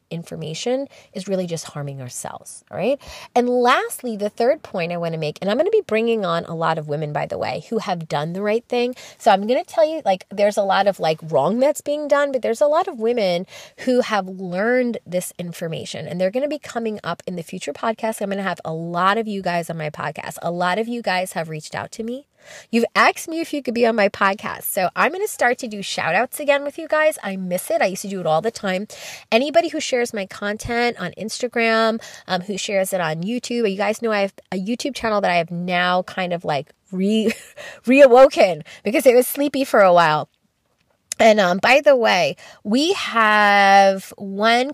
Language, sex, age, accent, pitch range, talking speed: English, female, 20-39, American, 175-240 Hz, 235 wpm